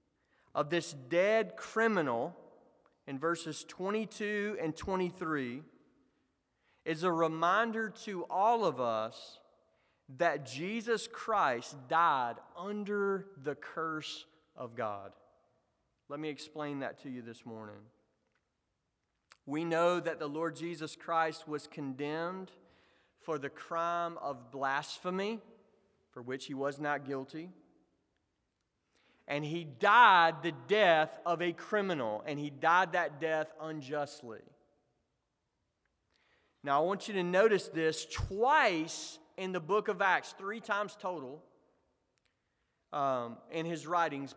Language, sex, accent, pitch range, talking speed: English, male, American, 145-205 Hz, 120 wpm